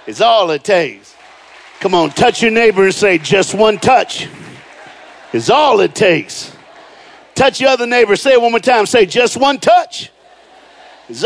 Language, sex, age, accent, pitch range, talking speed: English, male, 50-69, American, 180-260 Hz, 170 wpm